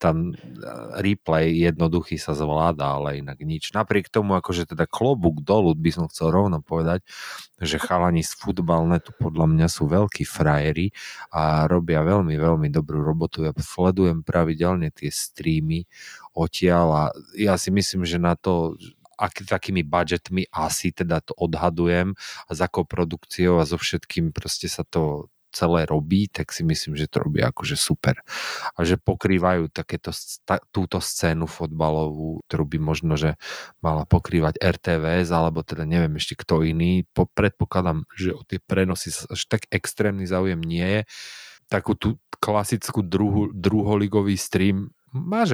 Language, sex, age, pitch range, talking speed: Slovak, male, 30-49, 80-95 Hz, 150 wpm